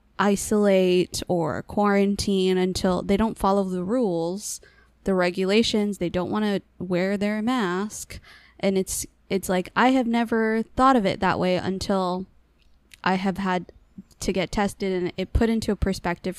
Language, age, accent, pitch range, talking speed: English, 20-39, American, 180-215 Hz, 155 wpm